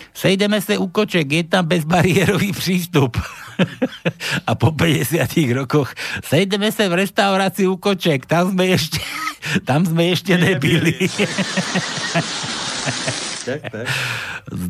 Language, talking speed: Slovak, 105 wpm